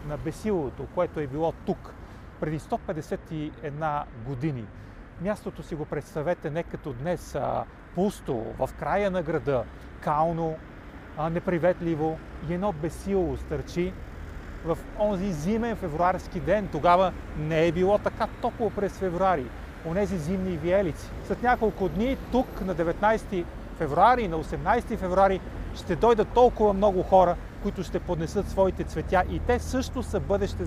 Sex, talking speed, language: male, 135 wpm, Bulgarian